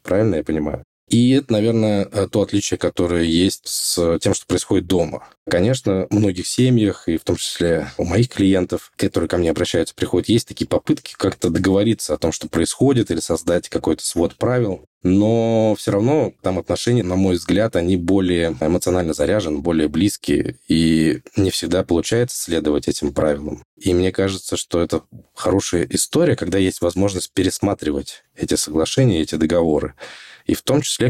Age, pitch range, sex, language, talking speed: 20-39, 85-105 Hz, male, Russian, 160 wpm